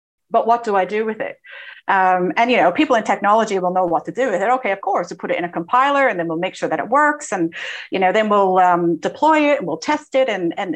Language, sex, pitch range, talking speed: English, female, 185-235 Hz, 295 wpm